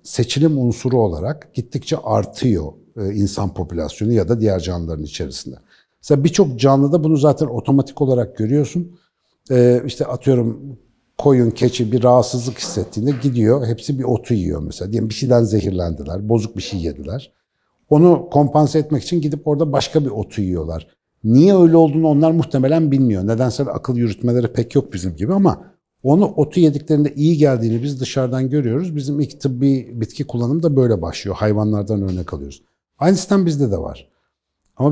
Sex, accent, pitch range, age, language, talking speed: male, native, 105-145 Hz, 60-79, Turkish, 155 wpm